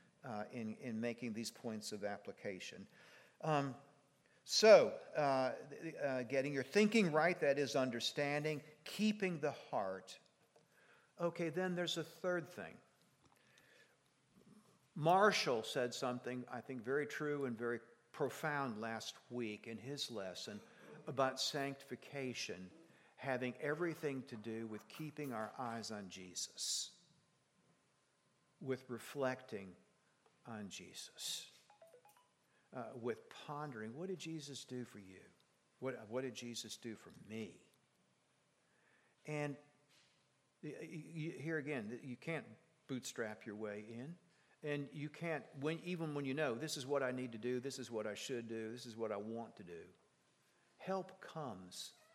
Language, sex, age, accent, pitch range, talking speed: English, male, 50-69, American, 115-150 Hz, 130 wpm